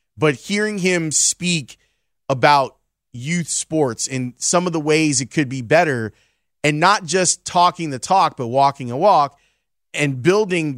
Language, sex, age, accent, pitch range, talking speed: English, male, 30-49, American, 130-165 Hz, 155 wpm